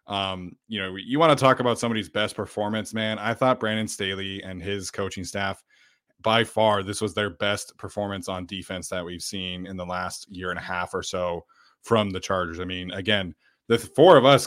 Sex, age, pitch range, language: male, 20-39, 95-115 Hz, English